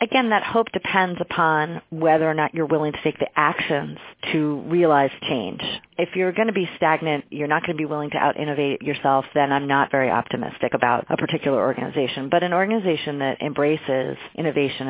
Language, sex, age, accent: English, female, 40-59, American